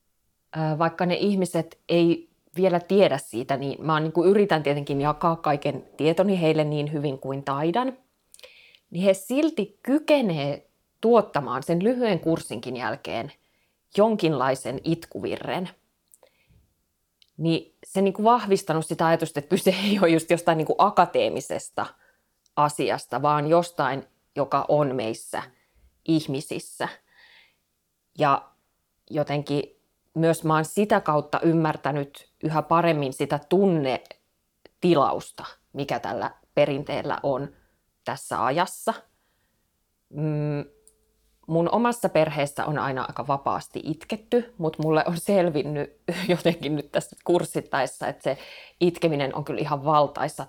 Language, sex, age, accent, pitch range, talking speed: Finnish, female, 30-49, native, 145-190 Hz, 115 wpm